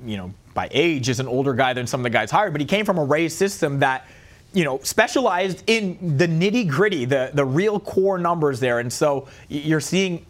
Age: 30-49